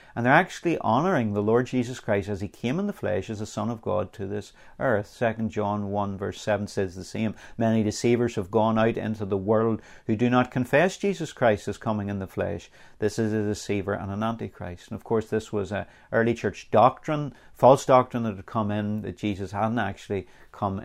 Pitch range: 100-120 Hz